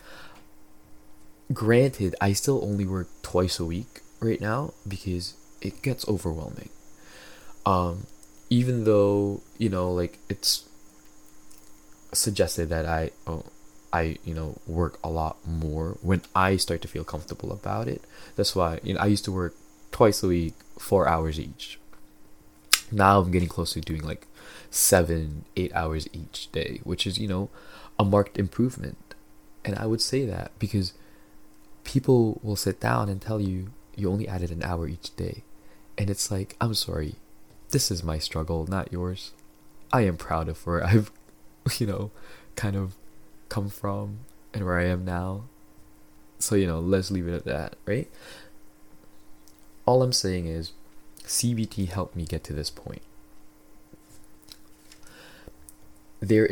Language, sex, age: English, male, 20-39